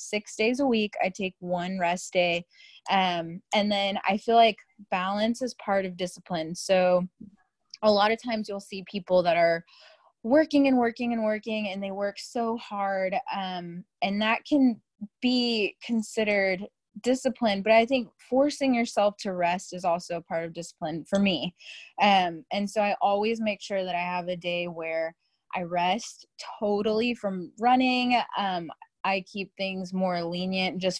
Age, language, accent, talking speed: 20-39, English, American, 165 wpm